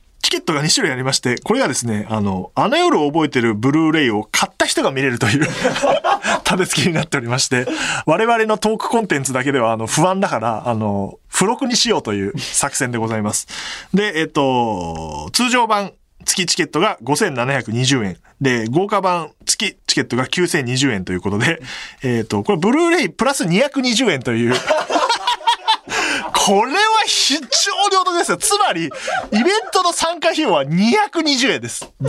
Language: Japanese